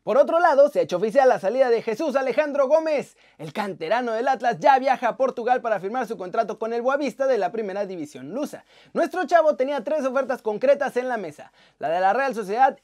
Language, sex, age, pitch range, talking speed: Spanish, male, 30-49, 225-290 Hz, 220 wpm